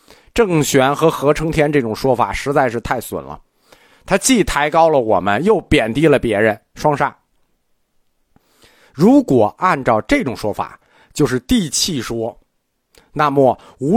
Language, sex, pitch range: Chinese, male, 125-195 Hz